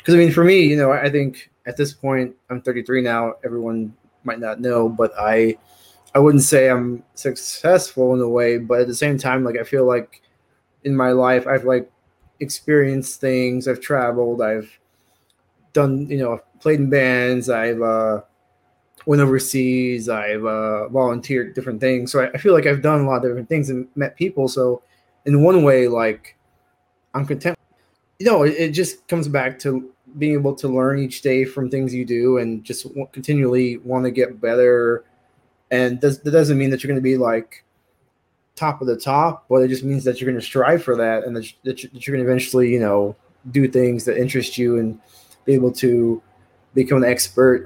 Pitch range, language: 120-140 Hz, English